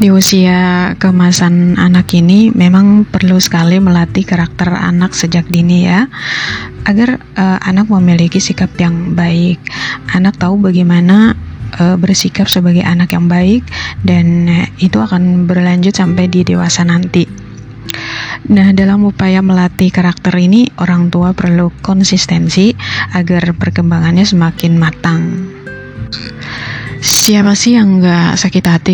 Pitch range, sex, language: 170-190 Hz, female, Indonesian